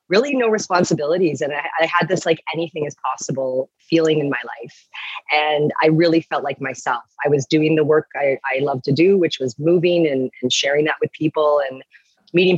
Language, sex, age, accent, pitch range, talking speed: English, female, 30-49, American, 140-170 Hz, 205 wpm